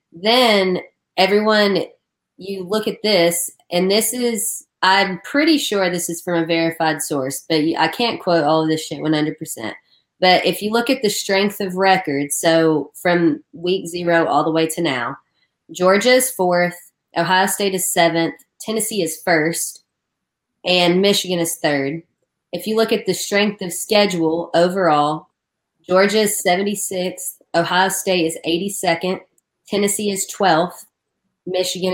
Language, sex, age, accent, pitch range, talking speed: English, female, 20-39, American, 165-205 Hz, 150 wpm